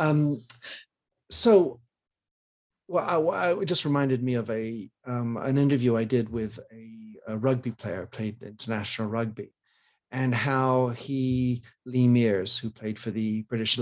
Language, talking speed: English, 150 wpm